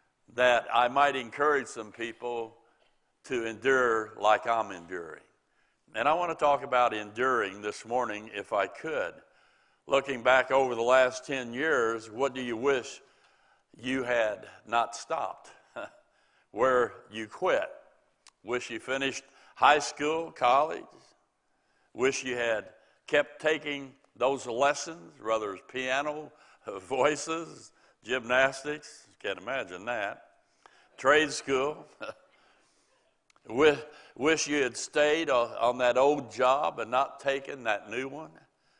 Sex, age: male, 60-79